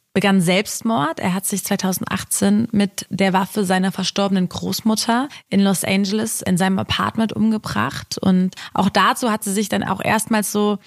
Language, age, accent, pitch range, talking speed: German, 20-39, German, 185-220 Hz, 160 wpm